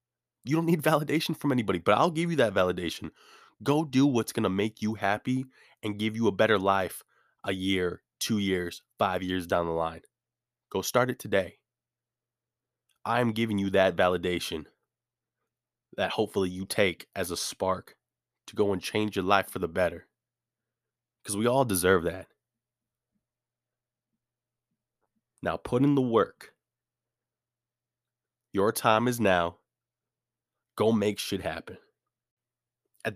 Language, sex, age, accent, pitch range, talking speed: English, male, 20-39, American, 95-120 Hz, 145 wpm